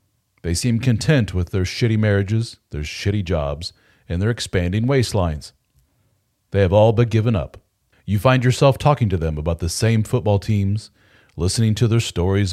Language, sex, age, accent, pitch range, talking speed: English, male, 40-59, American, 95-120 Hz, 170 wpm